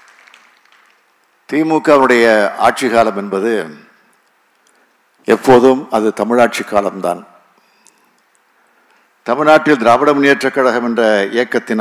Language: Tamil